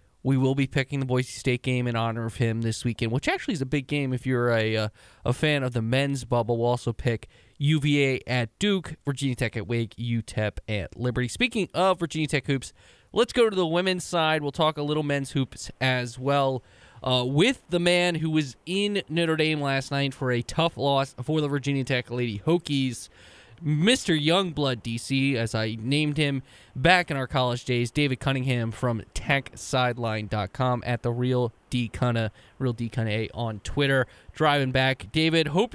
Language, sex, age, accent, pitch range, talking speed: English, male, 20-39, American, 120-160 Hz, 190 wpm